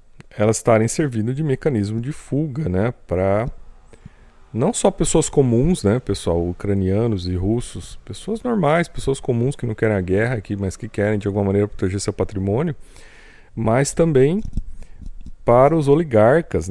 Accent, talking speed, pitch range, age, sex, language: Brazilian, 150 wpm, 100-130 Hz, 40-59, male, Portuguese